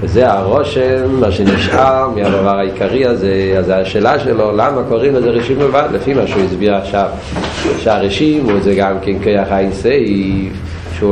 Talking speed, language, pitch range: 145 wpm, Hebrew, 95-125 Hz